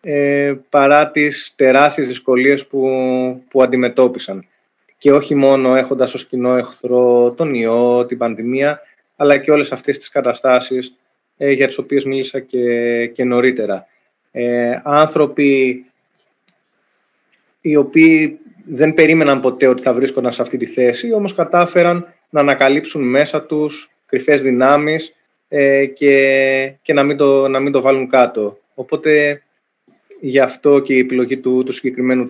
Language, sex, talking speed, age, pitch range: Greek, male, 140 wpm, 20-39, 125-145 Hz